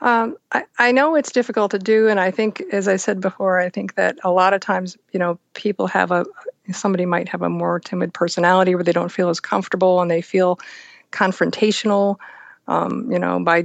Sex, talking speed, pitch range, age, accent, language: female, 210 wpm, 170-220 Hz, 50-69, American, English